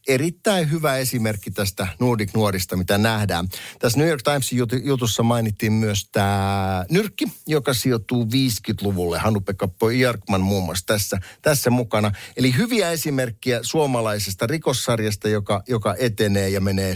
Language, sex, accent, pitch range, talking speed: Finnish, male, native, 95-120 Hz, 125 wpm